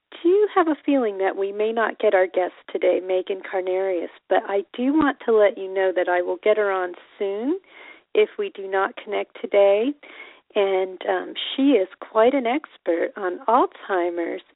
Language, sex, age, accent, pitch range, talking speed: English, female, 40-59, American, 190-275 Hz, 185 wpm